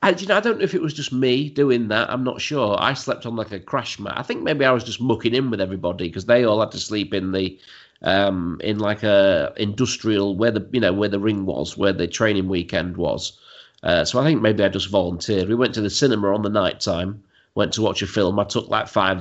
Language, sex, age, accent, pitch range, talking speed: English, male, 40-59, British, 95-125 Hz, 265 wpm